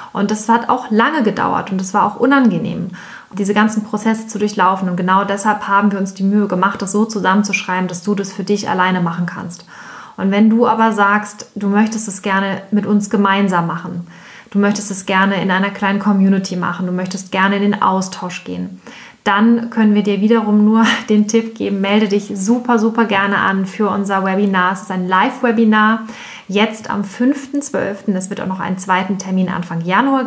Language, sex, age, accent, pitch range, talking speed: German, female, 20-39, German, 190-220 Hz, 195 wpm